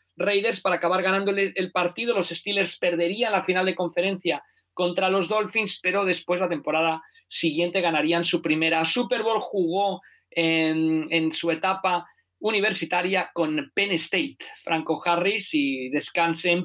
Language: Spanish